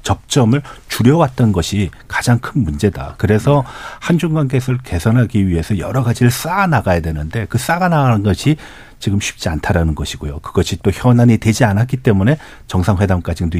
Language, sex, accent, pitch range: Korean, male, native, 90-130 Hz